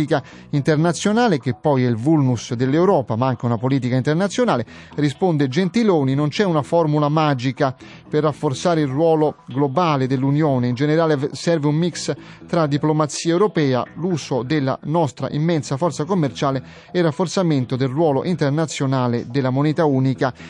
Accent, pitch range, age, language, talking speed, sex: native, 130-165 Hz, 30-49, Italian, 140 wpm, male